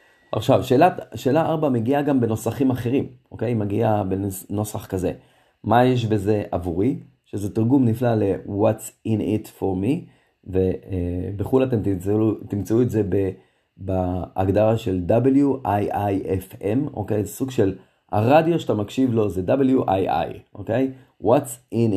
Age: 30-49